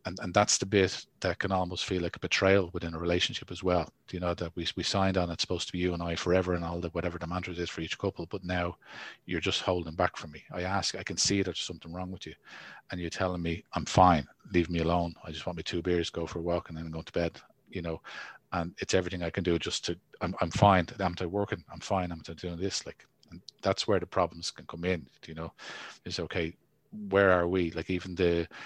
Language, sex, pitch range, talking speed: English, male, 85-95 Hz, 260 wpm